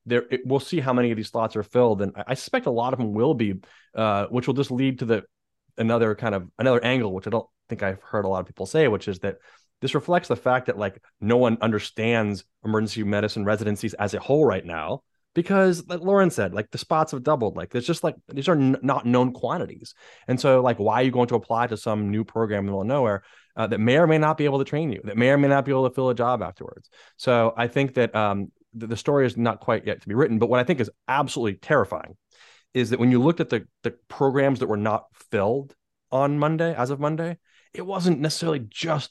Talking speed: 255 wpm